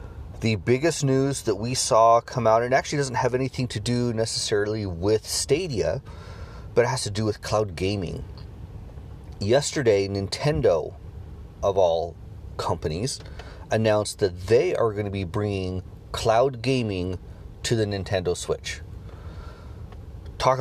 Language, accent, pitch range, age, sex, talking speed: English, American, 95-120 Hz, 30-49, male, 135 wpm